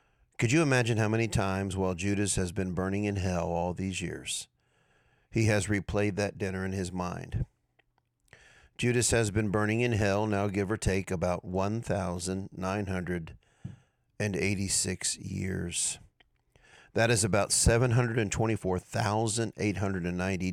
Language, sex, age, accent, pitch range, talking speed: English, male, 50-69, American, 95-115 Hz, 120 wpm